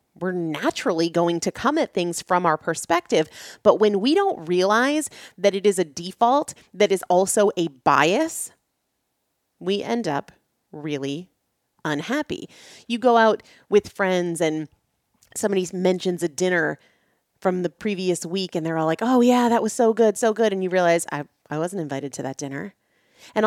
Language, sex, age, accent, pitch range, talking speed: English, female, 30-49, American, 170-220 Hz, 170 wpm